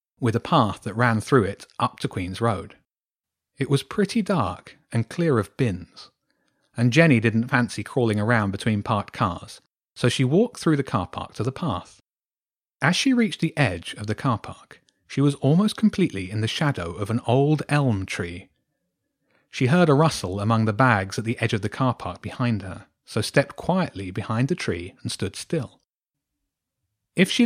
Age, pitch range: 30-49, 105-145 Hz